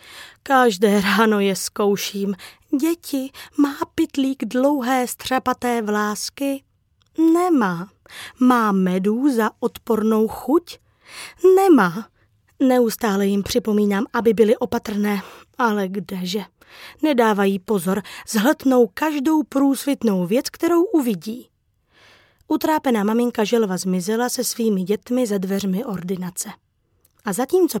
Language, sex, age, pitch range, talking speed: Czech, female, 20-39, 205-270 Hz, 95 wpm